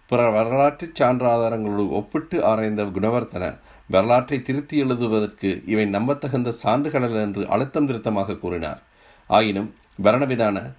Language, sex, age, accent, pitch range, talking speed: Tamil, male, 50-69, native, 105-130 Hz, 95 wpm